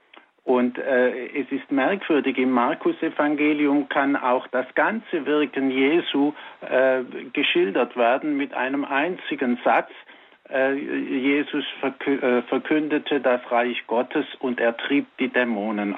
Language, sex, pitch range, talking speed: German, male, 125-145 Hz, 115 wpm